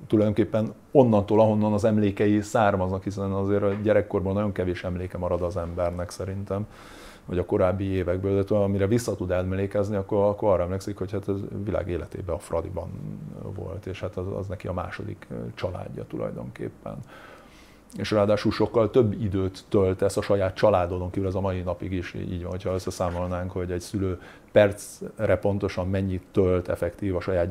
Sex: male